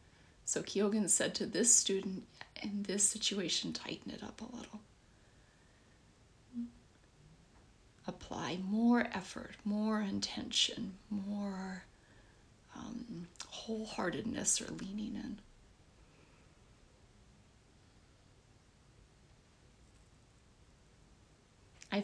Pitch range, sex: 180-235 Hz, female